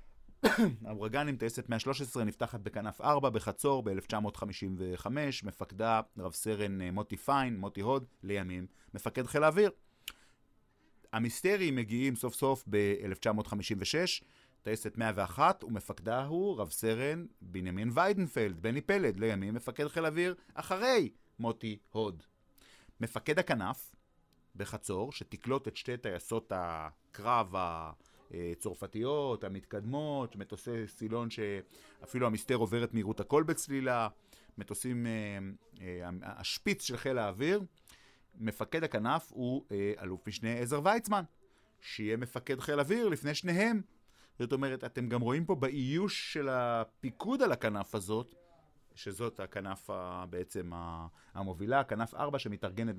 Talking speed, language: 120 wpm, Hebrew